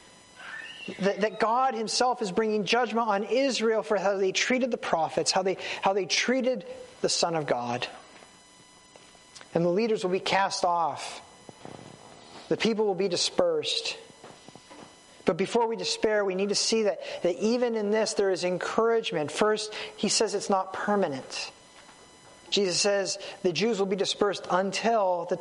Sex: male